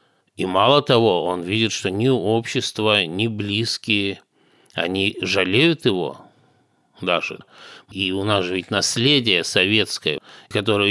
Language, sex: Russian, male